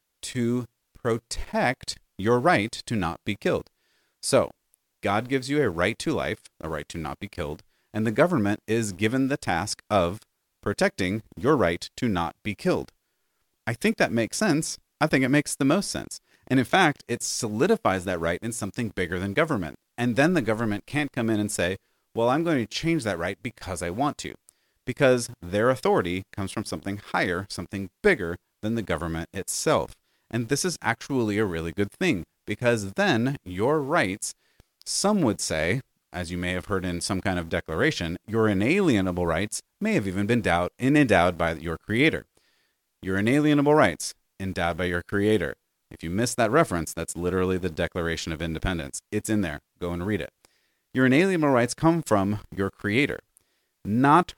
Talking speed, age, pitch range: 180 wpm, 30-49, 90-125 Hz